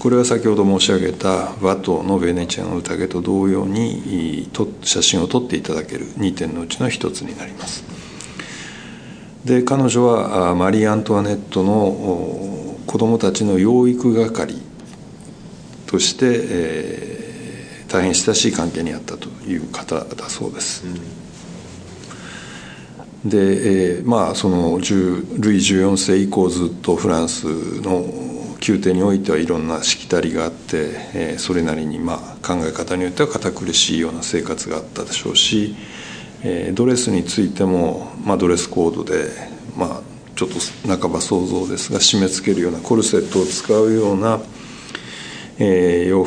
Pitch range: 90-110 Hz